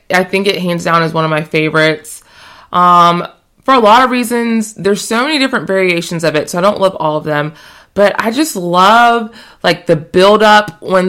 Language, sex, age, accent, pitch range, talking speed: English, female, 20-39, American, 155-190 Hz, 205 wpm